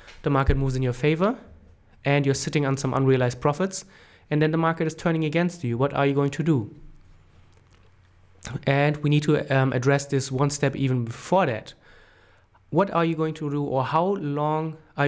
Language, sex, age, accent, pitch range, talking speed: English, male, 30-49, German, 125-150 Hz, 195 wpm